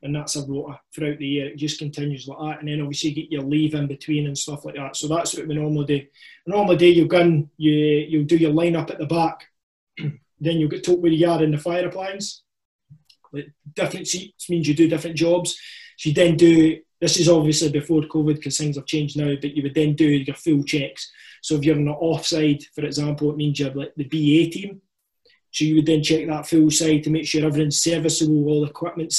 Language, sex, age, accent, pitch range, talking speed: English, male, 20-39, British, 150-165 Hz, 240 wpm